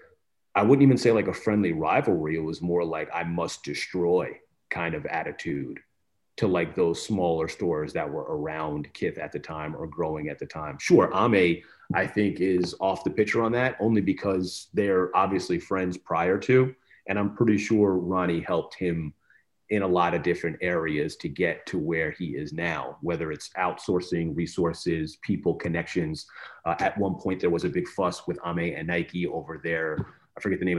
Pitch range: 85-105 Hz